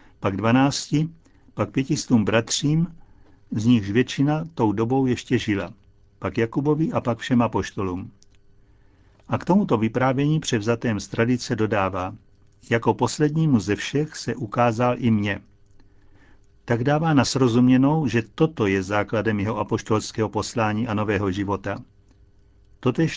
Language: Czech